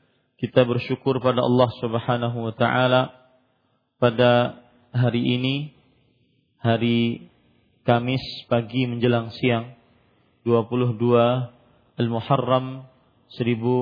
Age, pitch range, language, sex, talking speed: 40-59, 115-125 Hz, Malay, male, 75 wpm